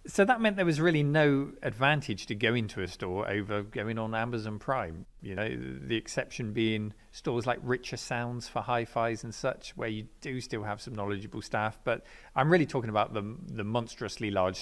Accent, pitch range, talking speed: British, 105-130 Hz, 195 wpm